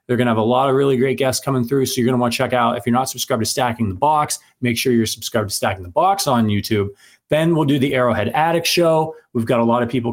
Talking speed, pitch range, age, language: 300 wpm, 115-145 Hz, 30-49, English